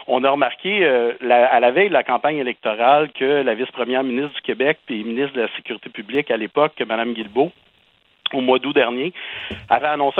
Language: French